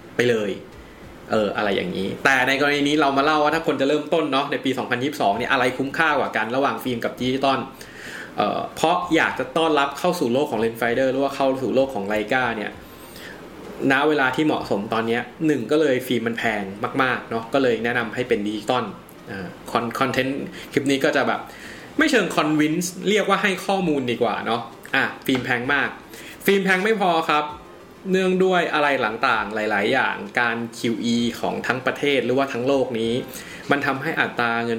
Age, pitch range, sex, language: 20-39, 120-155 Hz, male, Thai